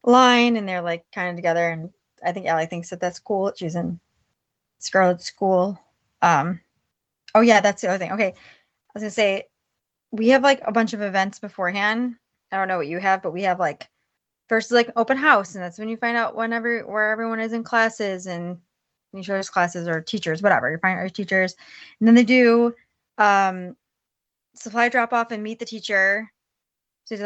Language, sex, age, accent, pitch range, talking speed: English, female, 20-39, American, 180-225 Hz, 200 wpm